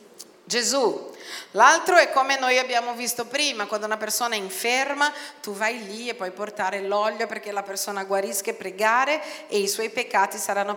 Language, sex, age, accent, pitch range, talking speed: Italian, female, 40-59, native, 205-305 Hz, 175 wpm